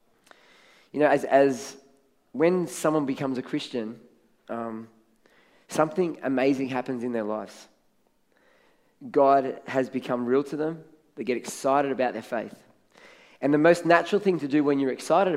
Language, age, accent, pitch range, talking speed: English, 20-39, Australian, 120-145 Hz, 150 wpm